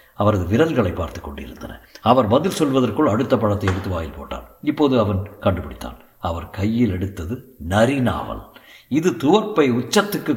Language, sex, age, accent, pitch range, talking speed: Tamil, male, 60-79, native, 105-150 Hz, 125 wpm